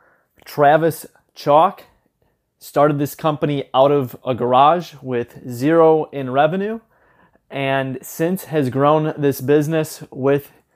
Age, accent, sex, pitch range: 30-49, American, male, 135-160 Hz